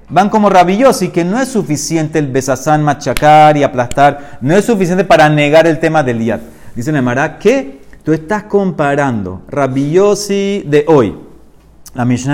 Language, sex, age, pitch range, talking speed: Spanish, male, 40-59, 130-175 Hz, 160 wpm